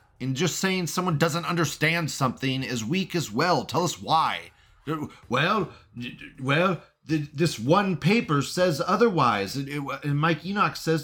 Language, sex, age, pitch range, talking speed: English, male, 30-49, 105-160 Hz, 135 wpm